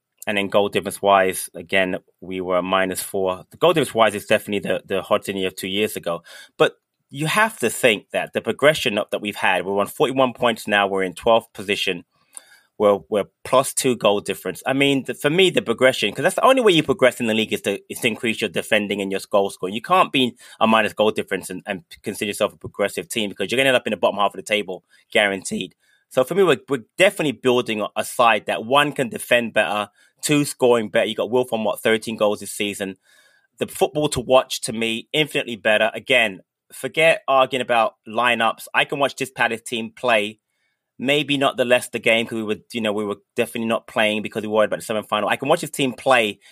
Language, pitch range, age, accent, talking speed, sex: English, 100-130 Hz, 20-39, British, 235 wpm, male